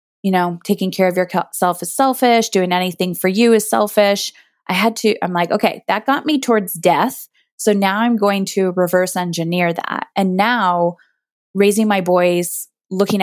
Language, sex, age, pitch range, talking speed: English, female, 20-39, 180-220 Hz, 175 wpm